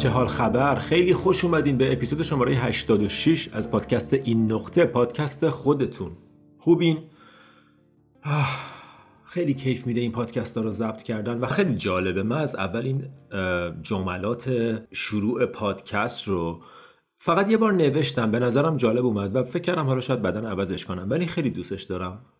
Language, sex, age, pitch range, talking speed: Persian, male, 40-59, 110-160 Hz, 145 wpm